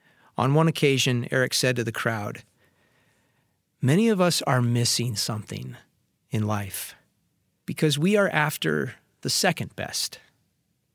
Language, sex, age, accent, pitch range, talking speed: English, male, 30-49, American, 120-160 Hz, 125 wpm